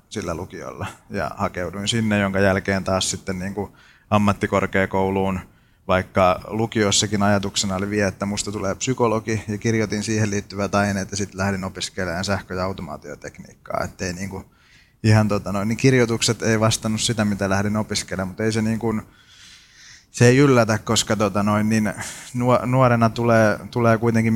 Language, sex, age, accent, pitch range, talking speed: Finnish, male, 30-49, native, 95-110 Hz, 150 wpm